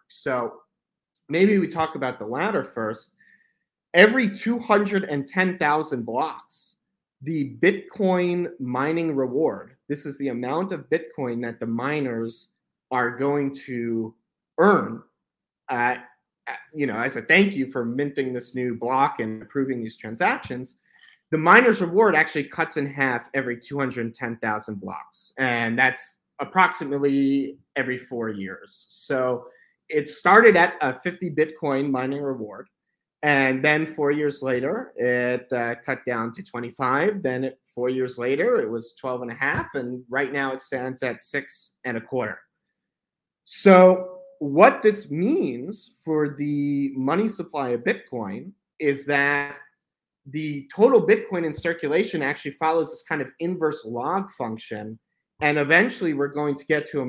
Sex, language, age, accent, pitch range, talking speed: male, English, 30-49, American, 125-165 Hz, 140 wpm